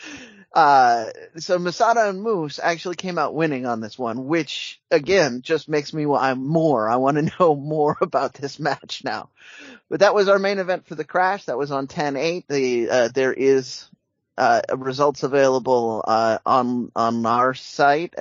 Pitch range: 125-165 Hz